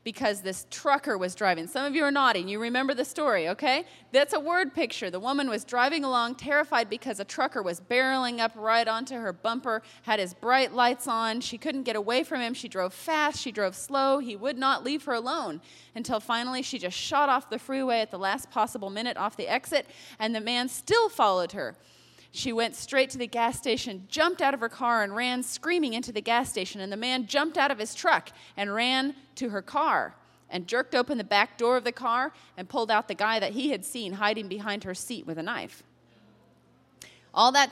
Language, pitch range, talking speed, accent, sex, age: English, 215-275 Hz, 220 wpm, American, female, 30-49